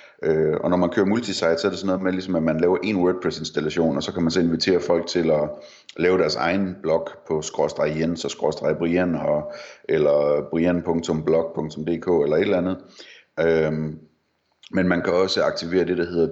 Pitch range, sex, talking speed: 80-95 Hz, male, 175 wpm